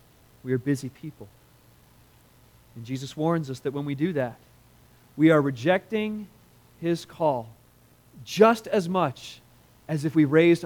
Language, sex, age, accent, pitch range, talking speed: English, male, 40-59, American, 120-160 Hz, 140 wpm